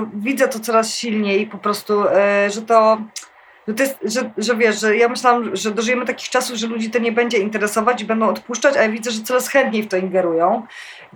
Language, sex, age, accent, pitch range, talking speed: Polish, female, 20-39, native, 185-220 Hz, 215 wpm